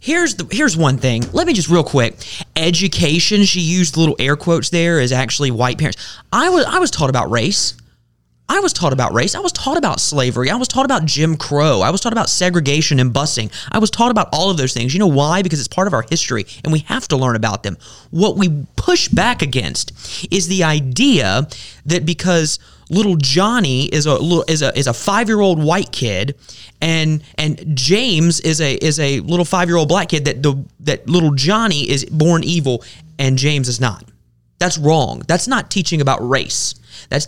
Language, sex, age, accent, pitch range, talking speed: English, male, 20-39, American, 135-185 Hz, 205 wpm